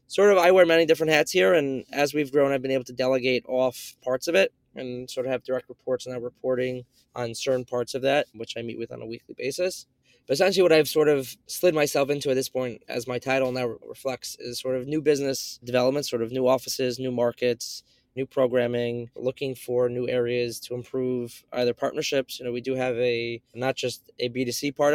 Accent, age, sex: American, 20-39, male